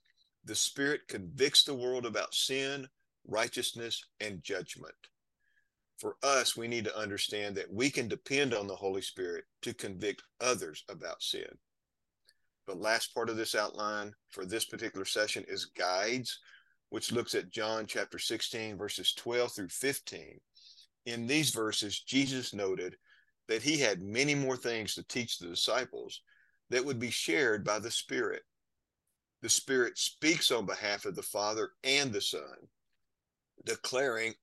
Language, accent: English, American